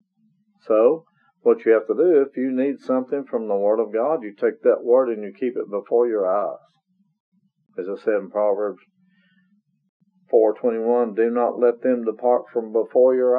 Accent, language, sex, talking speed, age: American, English, male, 180 wpm, 50-69